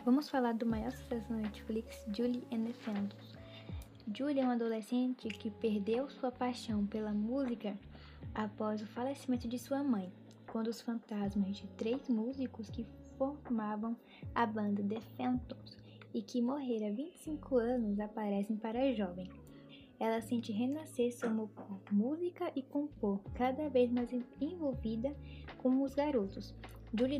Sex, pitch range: female, 215-255 Hz